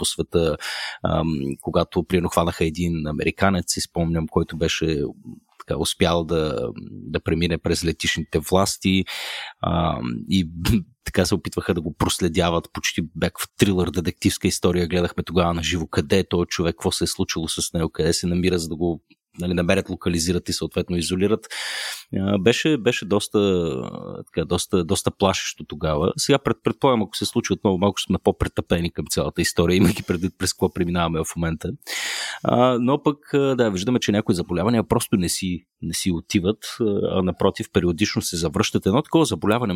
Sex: male